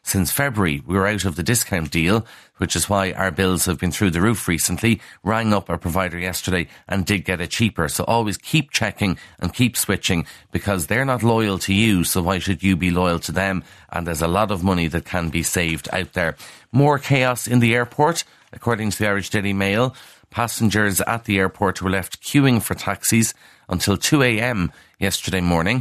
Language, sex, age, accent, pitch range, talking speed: English, male, 40-59, Irish, 90-110 Hz, 200 wpm